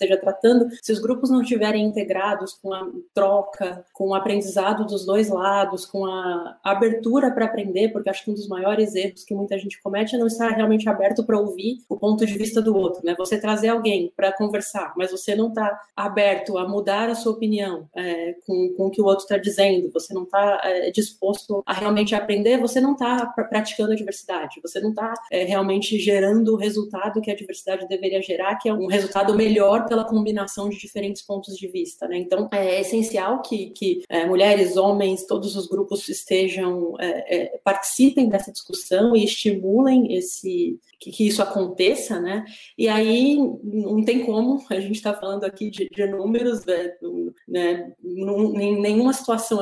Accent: Brazilian